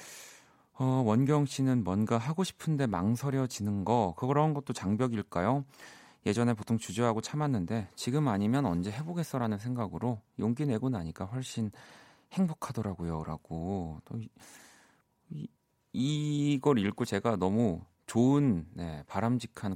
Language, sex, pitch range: Korean, male, 90-130 Hz